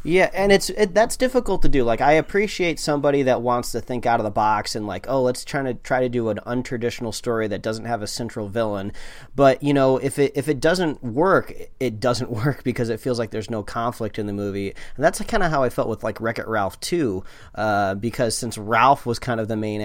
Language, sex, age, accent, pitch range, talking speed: English, male, 30-49, American, 105-135 Hz, 240 wpm